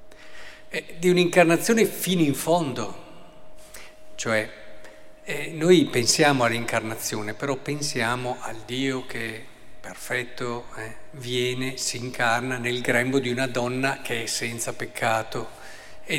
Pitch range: 125-170 Hz